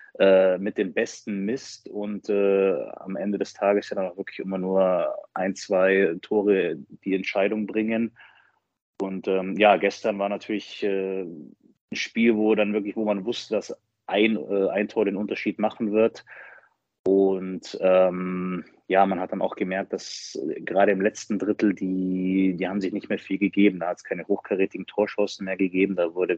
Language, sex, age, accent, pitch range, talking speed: German, male, 30-49, German, 95-110 Hz, 175 wpm